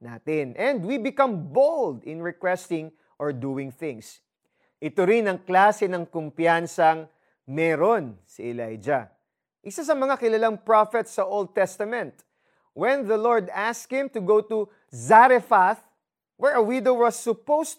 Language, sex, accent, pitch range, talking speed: Filipino, male, native, 165-230 Hz, 140 wpm